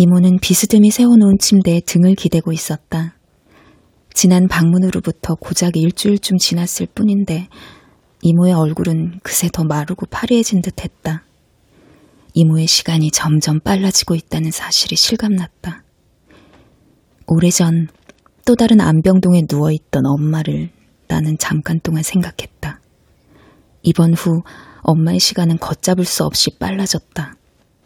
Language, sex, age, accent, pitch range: Korean, female, 20-39, native, 160-190 Hz